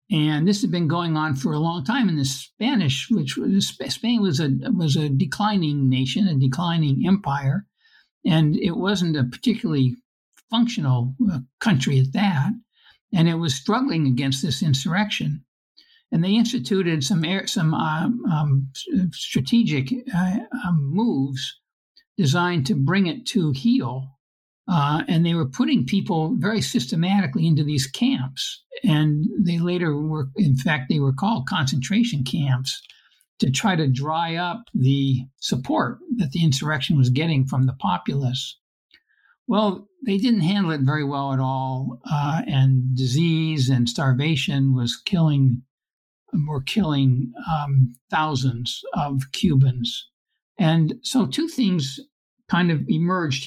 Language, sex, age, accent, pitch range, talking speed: English, male, 60-79, American, 135-205 Hz, 140 wpm